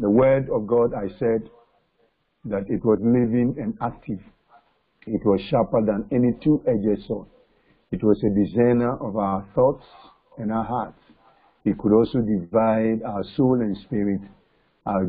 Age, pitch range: 50-69, 105-120 Hz